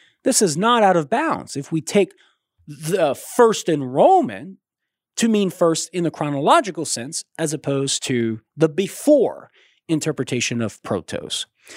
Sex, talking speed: male, 140 wpm